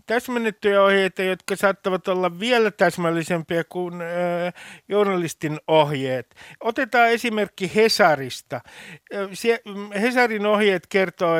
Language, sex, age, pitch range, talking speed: Finnish, male, 60-79, 155-205 Hz, 85 wpm